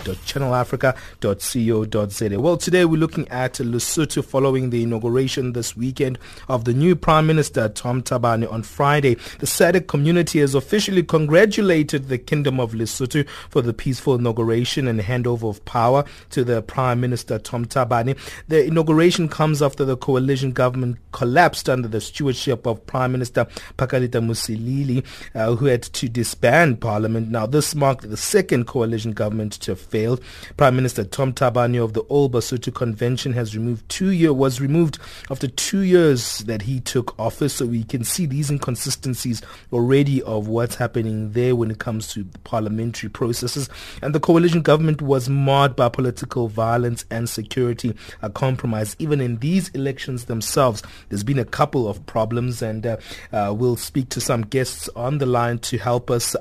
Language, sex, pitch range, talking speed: English, male, 115-140 Hz, 165 wpm